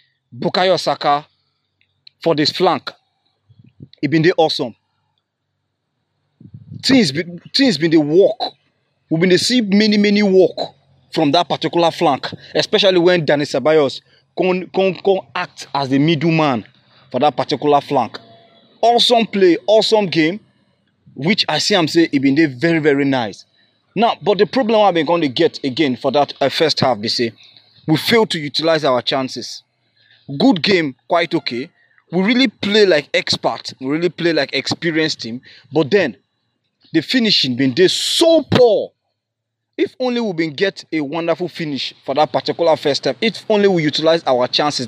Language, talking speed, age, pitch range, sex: English, 160 wpm, 30-49, 135-185 Hz, male